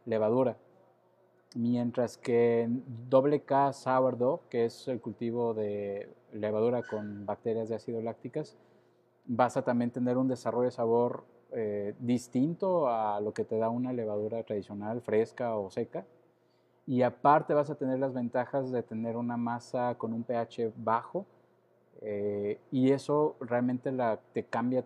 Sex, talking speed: male, 145 wpm